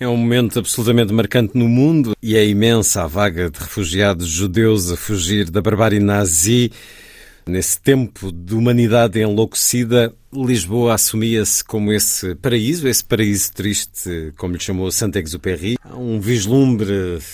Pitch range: 100-120 Hz